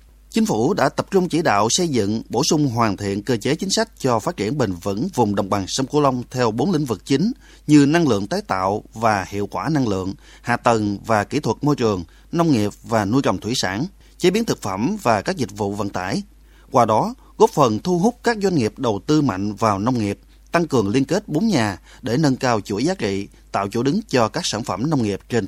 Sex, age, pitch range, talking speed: male, 20-39, 105-150 Hz, 245 wpm